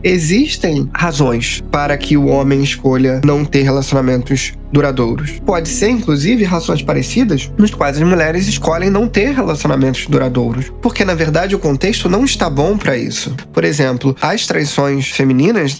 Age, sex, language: 20-39, male, Portuguese